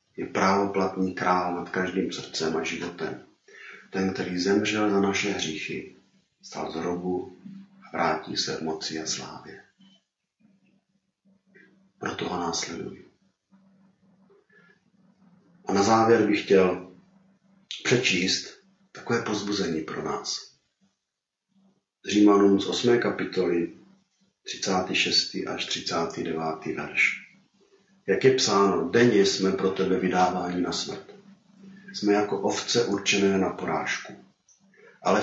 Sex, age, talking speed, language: male, 40-59, 105 wpm, Czech